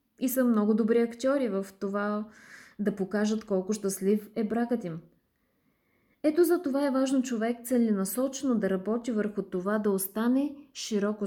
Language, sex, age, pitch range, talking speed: Bulgarian, female, 20-39, 210-260 Hz, 150 wpm